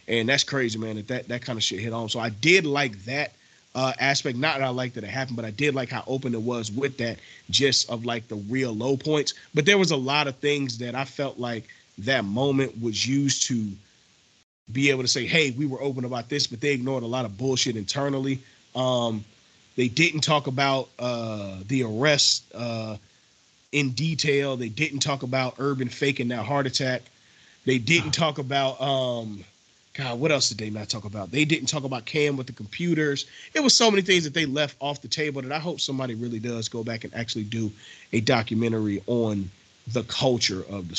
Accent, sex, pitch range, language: American, male, 115-140 Hz, English